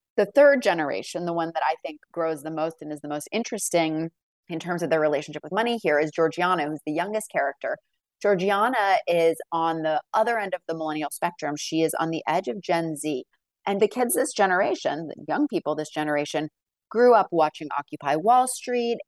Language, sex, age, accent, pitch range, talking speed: English, female, 30-49, American, 160-215 Hz, 200 wpm